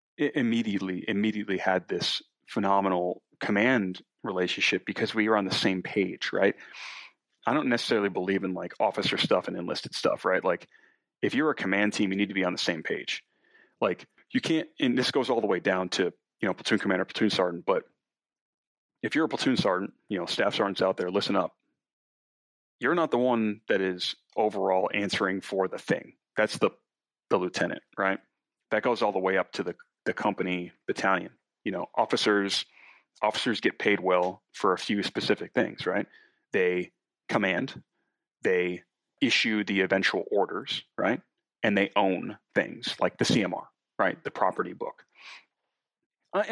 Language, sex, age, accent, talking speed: English, male, 30-49, American, 170 wpm